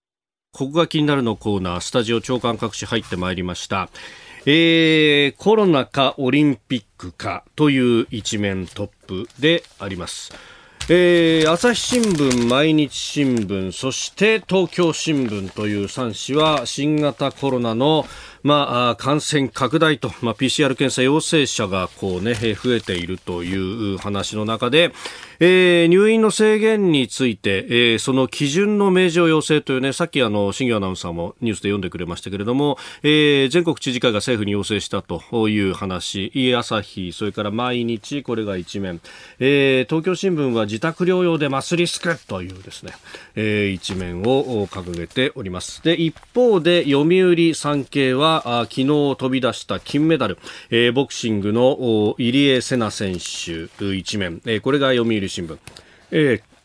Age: 40-59